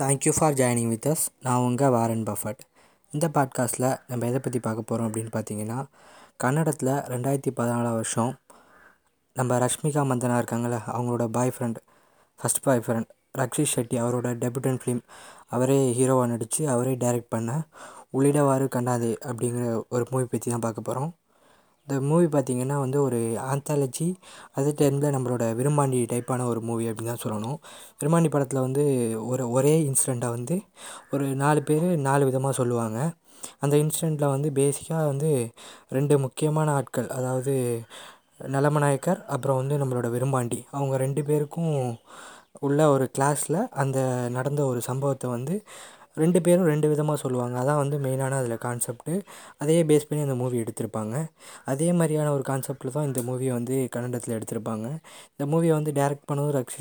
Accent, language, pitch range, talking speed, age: native, Tamil, 120-145 Hz, 145 wpm, 20-39